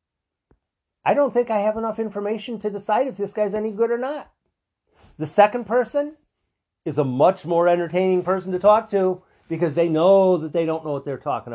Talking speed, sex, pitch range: 195 wpm, male, 135-210 Hz